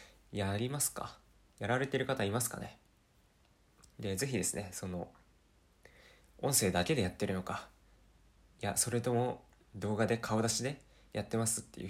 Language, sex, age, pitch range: Japanese, male, 20-39, 100-125 Hz